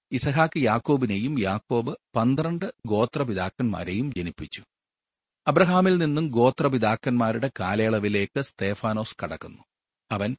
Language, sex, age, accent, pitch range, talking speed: Malayalam, male, 40-59, native, 100-145 Hz, 80 wpm